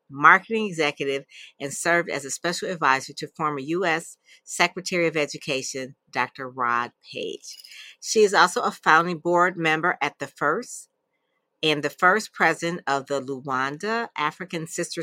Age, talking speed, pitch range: 50-69, 145 wpm, 140-180 Hz